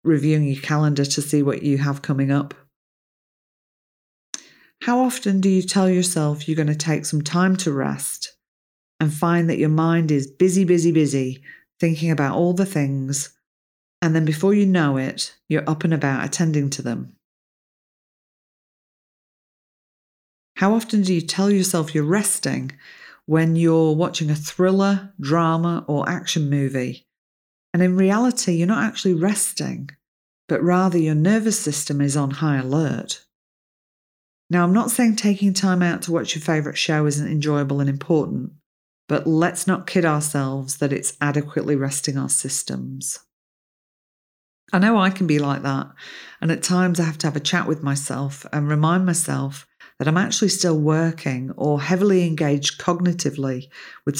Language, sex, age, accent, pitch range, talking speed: English, female, 40-59, British, 140-180 Hz, 155 wpm